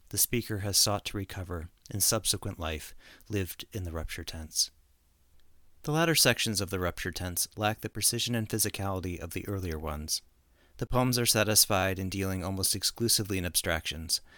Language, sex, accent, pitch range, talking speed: English, male, American, 85-105 Hz, 165 wpm